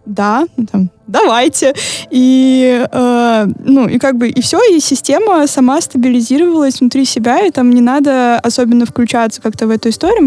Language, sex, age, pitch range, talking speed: Russian, female, 20-39, 240-280 Hz, 160 wpm